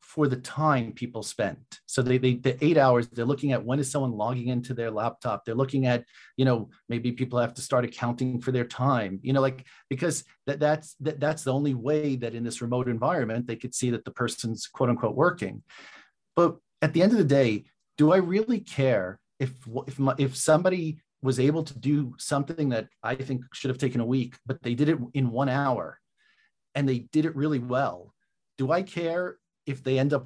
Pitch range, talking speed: 120-145 Hz, 215 wpm